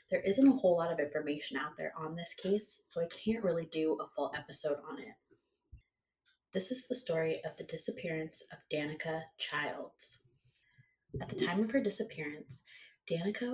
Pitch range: 150-195 Hz